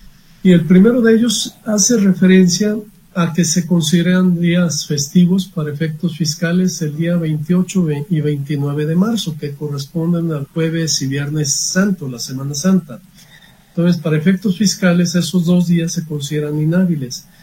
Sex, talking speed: male, 150 wpm